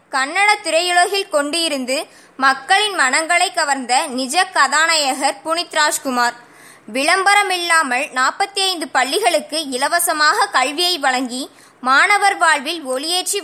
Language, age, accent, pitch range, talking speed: Tamil, 20-39, native, 275-370 Hz, 85 wpm